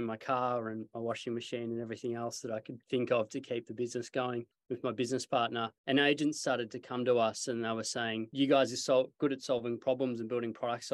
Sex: male